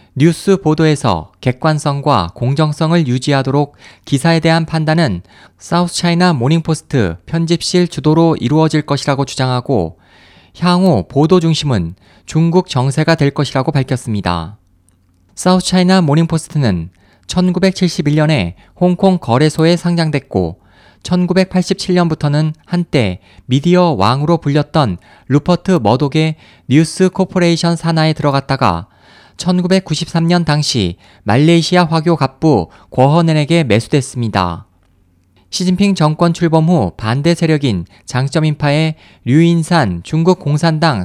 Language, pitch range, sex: Korean, 110-170 Hz, male